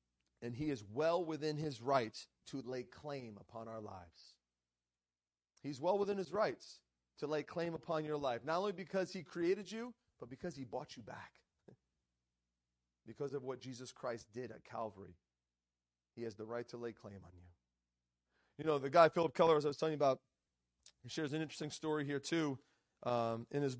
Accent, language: American, English